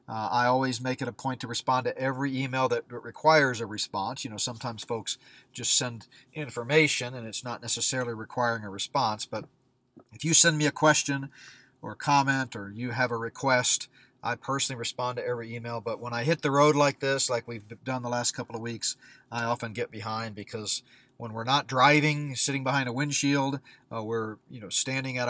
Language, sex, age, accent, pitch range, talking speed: English, male, 40-59, American, 115-135 Hz, 200 wpm